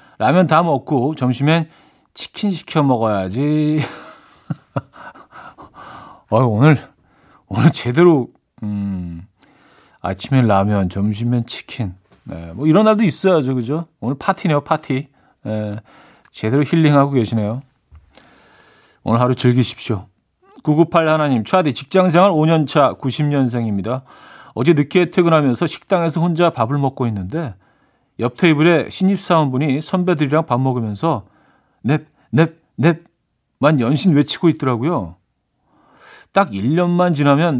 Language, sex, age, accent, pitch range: Korean, male, 40-59, native, 120-165 Hz